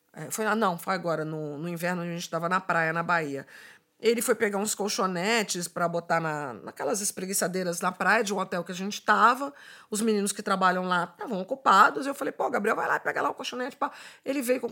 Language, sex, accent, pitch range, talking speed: Portuguese, female, Brazilian, 185-260 Hz, 230 wpm